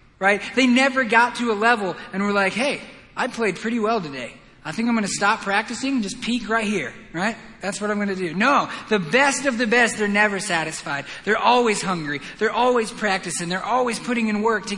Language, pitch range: English, 185-235 Hz